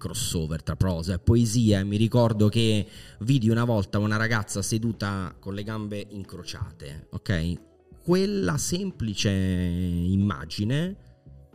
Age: 30-49